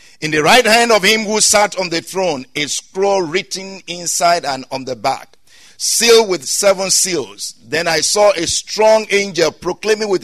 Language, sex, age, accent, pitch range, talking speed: English, male, 50-69, Nigerian, 160-215 Hz, 180 wpm